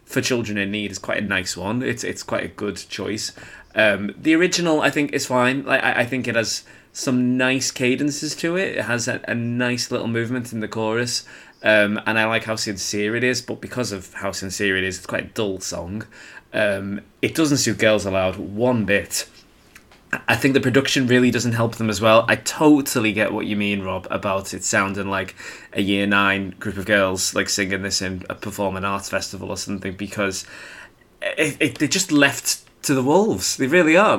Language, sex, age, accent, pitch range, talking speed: English, male, 20-39, British, 105-150 Hz, 210 wpm